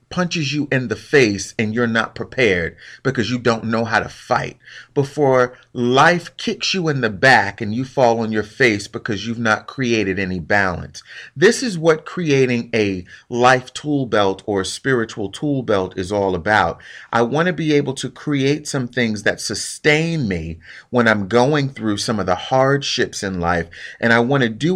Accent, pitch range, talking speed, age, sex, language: American, 110-150 Hz, 185 wpm, 30-49, male, English